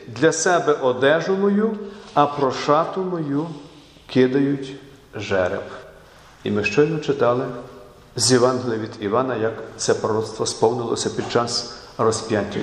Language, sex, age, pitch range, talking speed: Ukrainian, male, 50-69, 120-155 Hz, 115 wpm